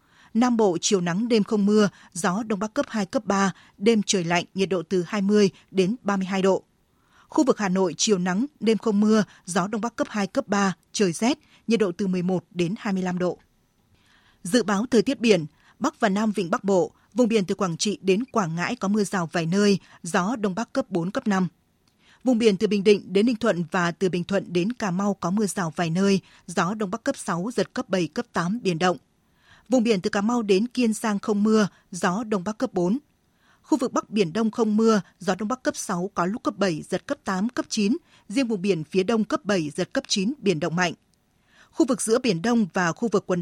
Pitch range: 185-225 Hz